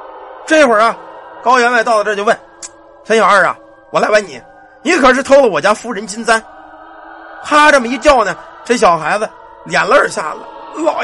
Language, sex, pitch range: Chinese, male, 230-310 Hz